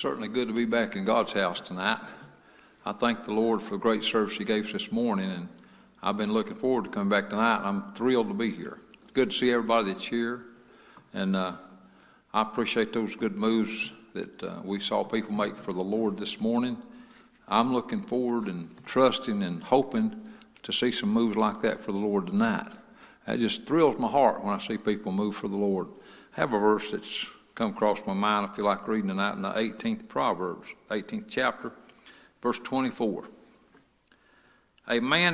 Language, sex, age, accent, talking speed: English, male, 50-69, American, 195 wpm